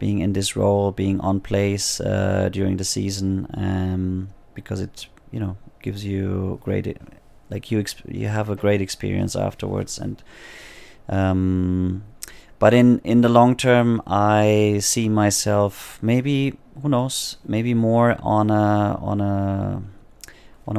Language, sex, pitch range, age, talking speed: English, male, 95-110 Hz, 30-49, 140 wpm